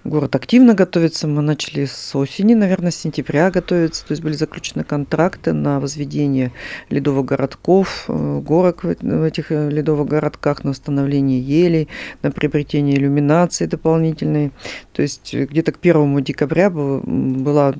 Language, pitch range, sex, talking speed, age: Russian, 140-160 Hz, female, 130 wpm, 50-69